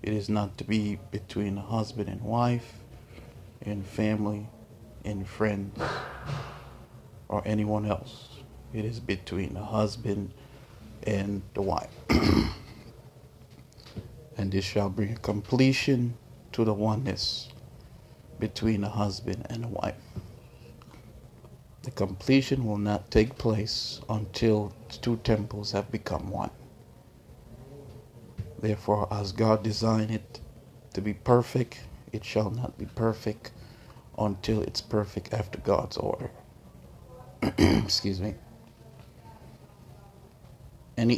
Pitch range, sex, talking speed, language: 105-115 Hz, male, 110 wpm, English